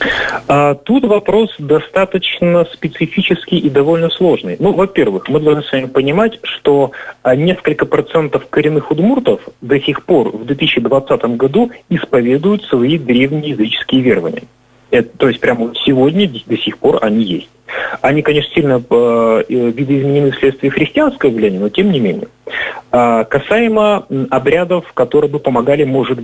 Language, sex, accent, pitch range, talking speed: Russian, male, native, 125-175 Hz, 135 wpm